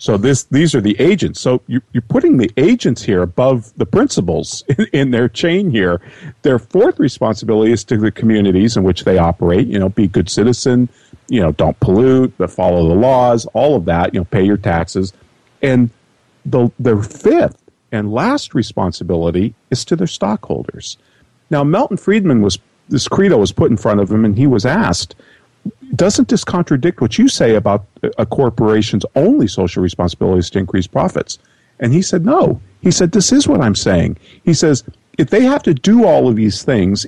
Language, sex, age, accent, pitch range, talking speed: English, male, 50-69, American, 100-140 Hz, 195 wpm